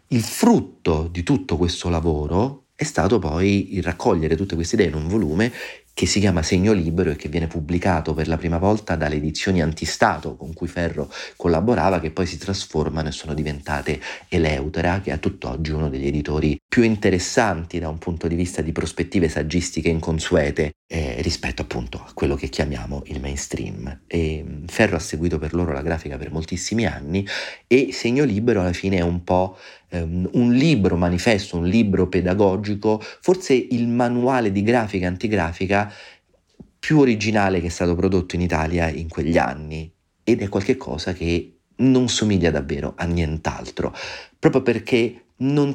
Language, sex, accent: Italian, male, native